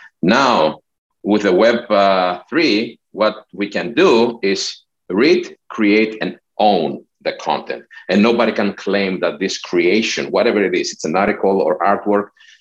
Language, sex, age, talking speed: English, male, 50-69, 150 wpm